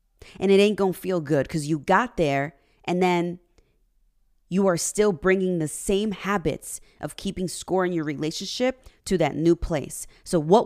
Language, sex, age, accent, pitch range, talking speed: English, female, 20-39, American, 135-185 Hz, 180 wpm